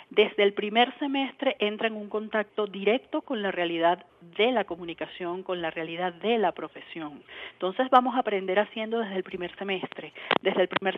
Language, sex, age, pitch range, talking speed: Spanish, female, 40-59, 185-230 Hz, 180 wpm